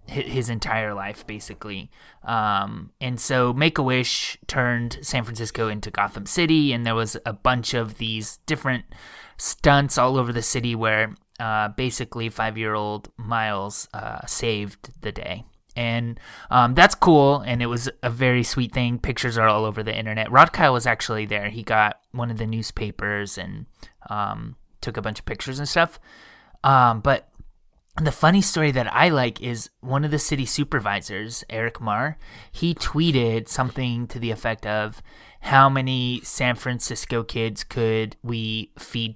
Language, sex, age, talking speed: English, male, 20-39, 160 wpm